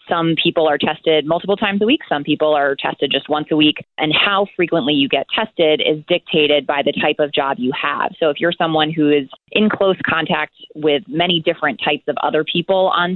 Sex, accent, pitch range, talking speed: female, American, 145-170 Hz, 220 wpm